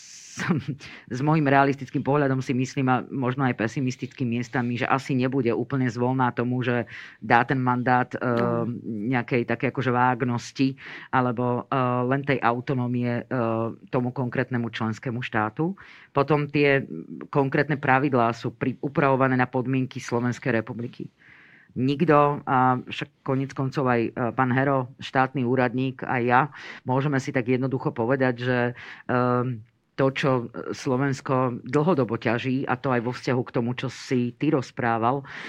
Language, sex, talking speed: Slovak, female, 135 wpm